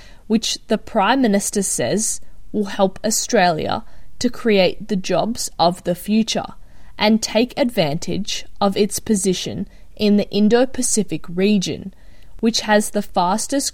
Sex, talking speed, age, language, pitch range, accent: female, 125 wpm, 20-39, English, 185-225 Hz, Australian